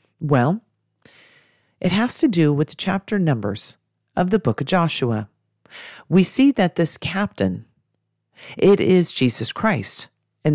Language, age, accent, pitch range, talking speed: English, 40-59, American, 130-180 Hz, 135 wpm